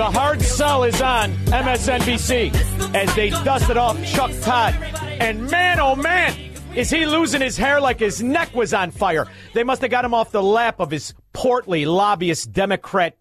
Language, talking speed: English, 180 wpm